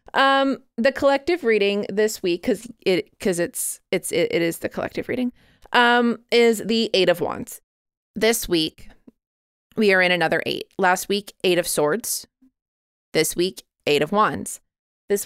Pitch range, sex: 175-225 Hz, female